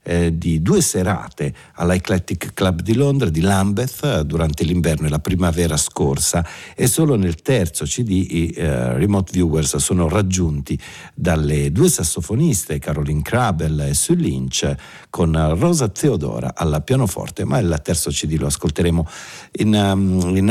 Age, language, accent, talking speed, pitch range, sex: 50-69, Italian, native, 140 wpm, 80-110 Hz, male